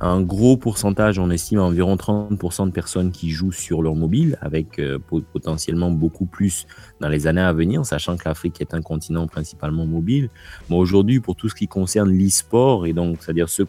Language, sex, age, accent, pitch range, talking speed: French, male, 30-49, French, 80-95 Hz, 195 wpm